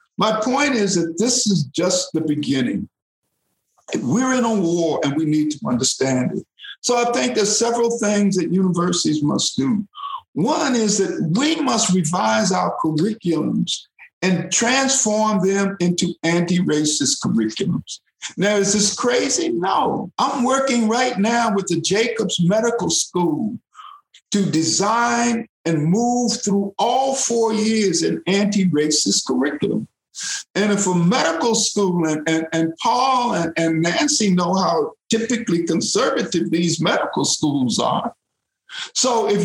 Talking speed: 135 wpm